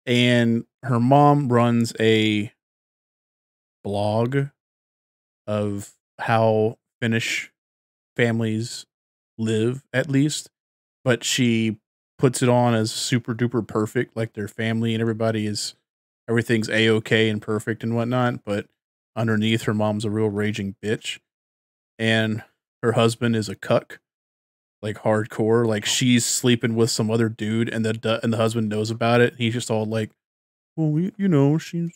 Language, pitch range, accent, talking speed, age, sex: English, 110-125 Hz, American, 140 wpm, 20-39, male